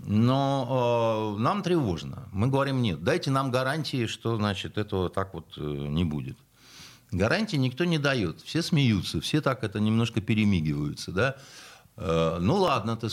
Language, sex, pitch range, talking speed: Russian, male, 95-145 Hz, 150 wpm